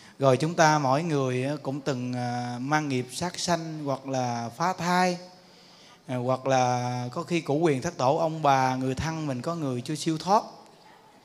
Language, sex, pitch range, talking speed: Vietnamese, male, 130-160 Hz, 175 wpm